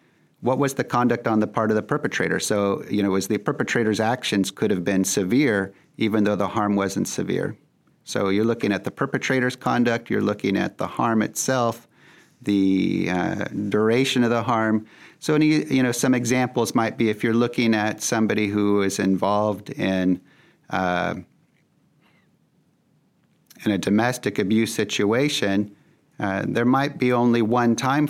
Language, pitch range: English, 100-125 Hz